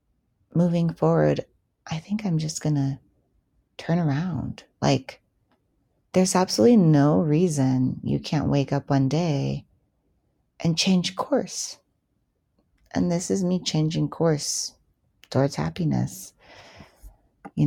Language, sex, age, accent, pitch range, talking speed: English, female, 30-49, American, 130-170 Hz, 110 wpm